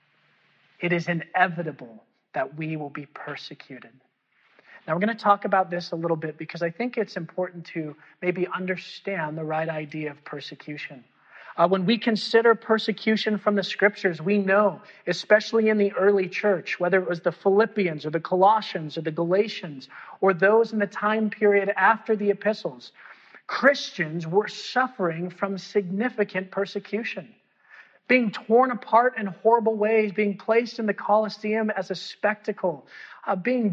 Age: 40-59